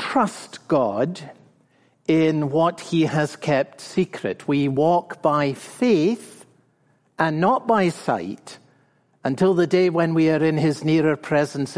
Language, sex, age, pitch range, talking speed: English, male, 60-79, 135-185 Hz, 130 wpm